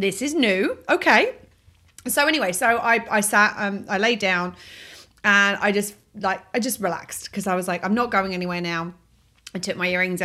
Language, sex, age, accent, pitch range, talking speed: English, female, 30-49, British, 180-225 Hz, 200 wpm